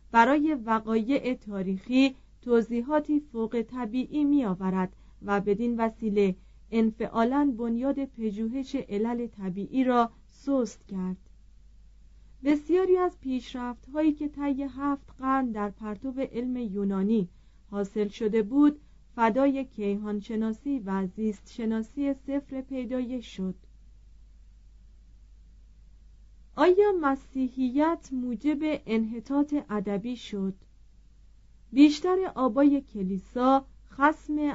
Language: Persian